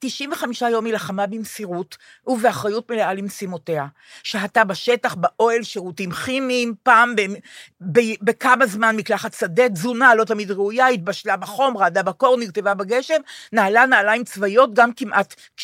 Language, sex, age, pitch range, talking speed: Hebrew, female, 50-69, 190-240 Hz, 135 wpm